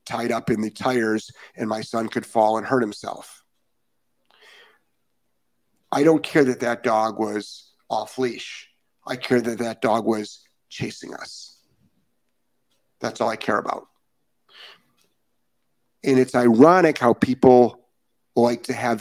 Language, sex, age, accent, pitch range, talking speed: English, male, 50-69, American, 115-135 Hz, 135 wpm